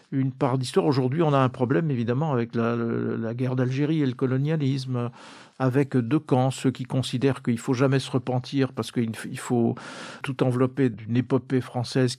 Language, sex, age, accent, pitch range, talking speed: French, male, 50-69, French, 125-150 Hz, 180 wpm